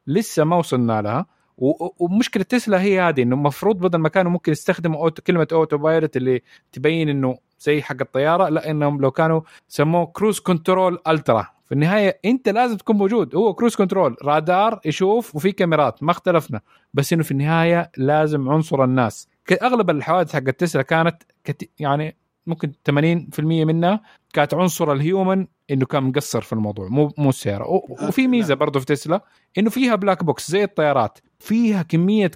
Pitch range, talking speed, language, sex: 145-190 Hz, 165 wpm, Arabic, male